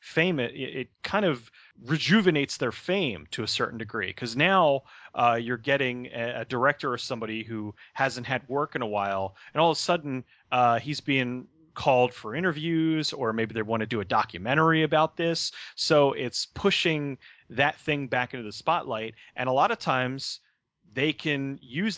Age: 30-49